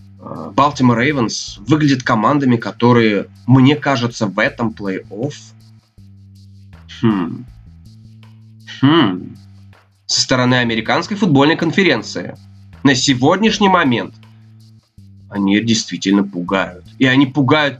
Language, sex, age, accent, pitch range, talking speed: Russian, male, 20-39, native, 110-145 Hz, 85 wpm